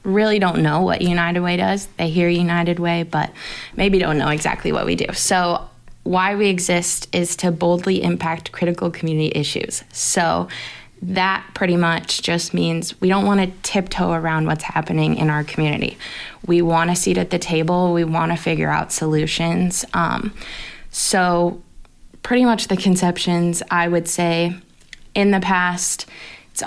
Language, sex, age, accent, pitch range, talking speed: English, female, 20-39, American, 170-190 Hz, 165 wpm